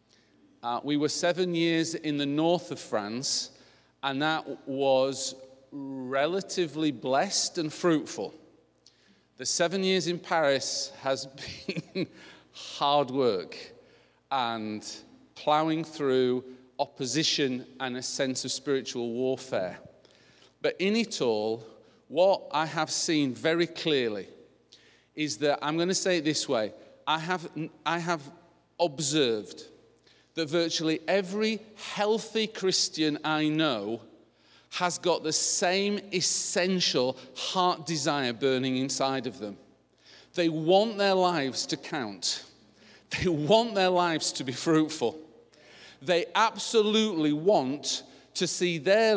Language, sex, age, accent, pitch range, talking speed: English, male, 40-59, British, 135-180 Hz, 120 wpm